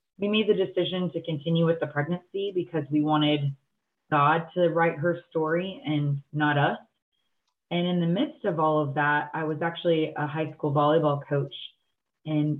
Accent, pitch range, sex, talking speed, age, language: American, 145-165 Hz, female, 175 wpm, 20-39, English